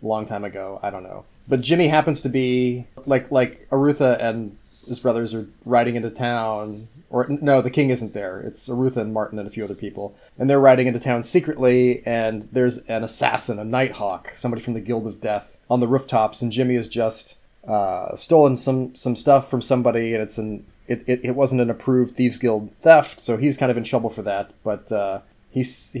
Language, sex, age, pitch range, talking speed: English, male, 30-49, 110-130 Hz, 210 wpm